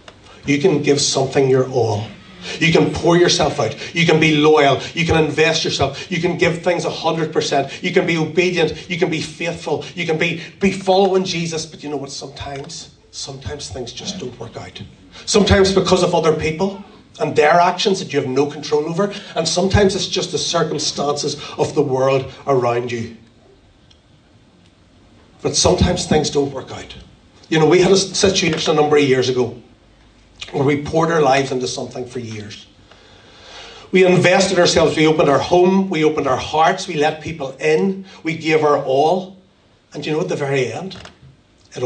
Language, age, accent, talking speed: English, 30-49, Irish, 180 wpm